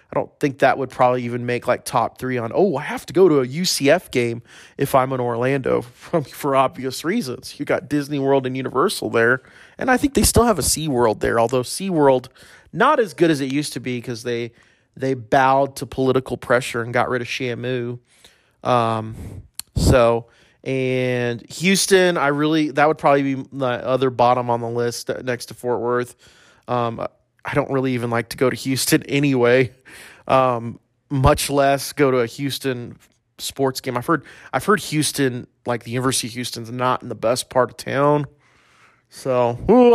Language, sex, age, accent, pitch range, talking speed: English, male, 30-49, American, 120-145 Hz, 190 wpm